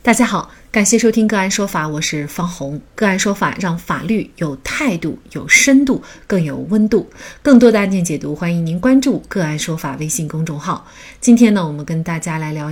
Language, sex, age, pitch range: Chinese, female, 30-49, 165-235 Hz